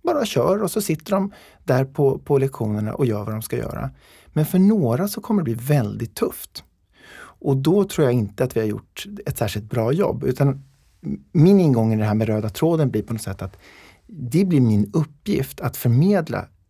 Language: Swedish